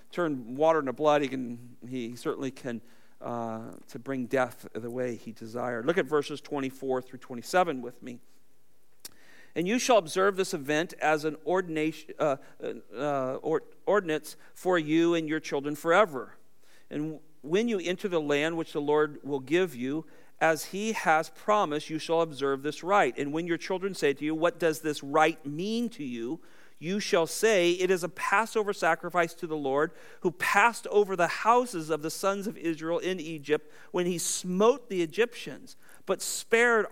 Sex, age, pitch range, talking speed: male, 50-69, 140-185 Hz, 175 wpm